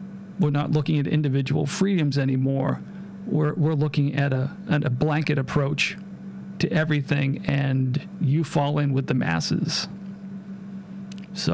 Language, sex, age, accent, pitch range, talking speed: English, male, 40-59, American, 140-195 Hz, 135 wpm